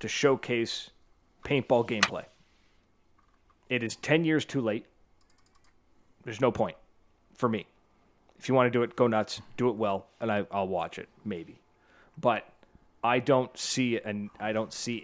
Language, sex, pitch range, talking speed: English, male, 100-130 Hz, 165 wpm